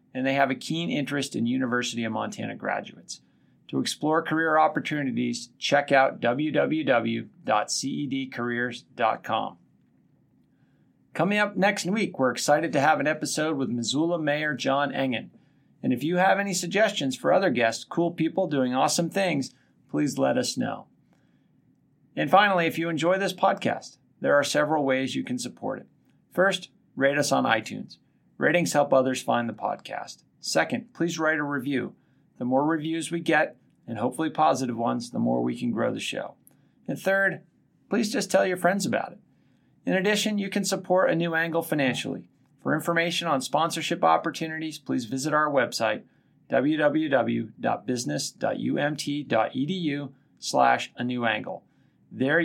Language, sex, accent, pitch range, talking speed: English, male, American, 130-170 Hz, 150 wpm